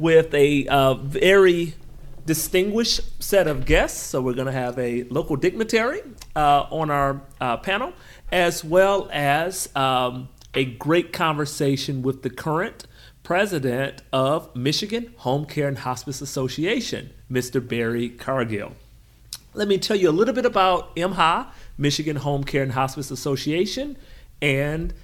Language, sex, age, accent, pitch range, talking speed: English, male, 40-59, American, 130-185 Hz, 135 wpm